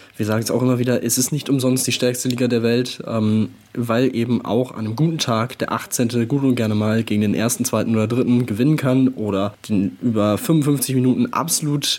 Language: German